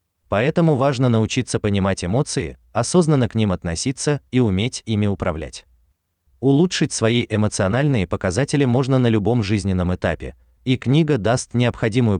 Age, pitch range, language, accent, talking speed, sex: 30-49, 85-125 Hz, Russian, native, 130 wpm, male